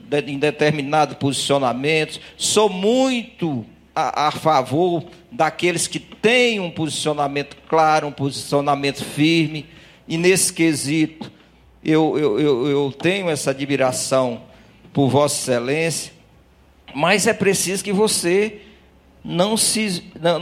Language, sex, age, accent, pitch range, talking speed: Portuguese, male, 50-69, Brazilian, 145-185 Hz, 110 wpm